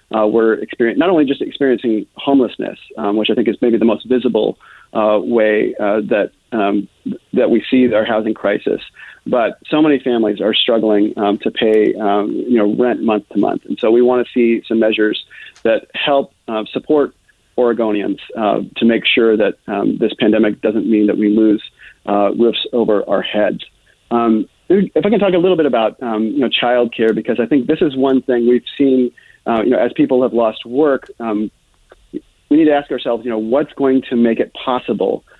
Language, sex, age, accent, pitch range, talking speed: English, male, 40-59, American, 110-130 Hz, 205 wpm